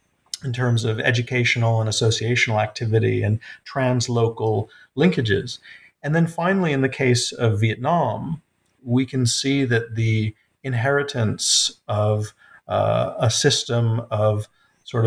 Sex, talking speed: male, 120 wpm